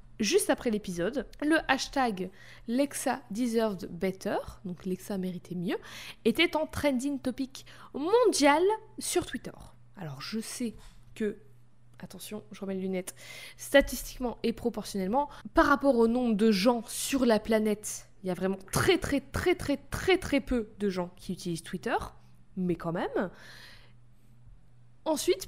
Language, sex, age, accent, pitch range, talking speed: French, female, 20-39, French, 190-260 Hz, 140 wpm